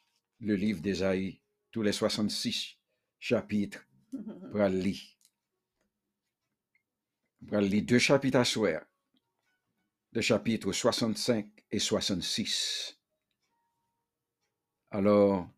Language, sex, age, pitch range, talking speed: English, male, 60-79, 105-130 Hz, 70 wpm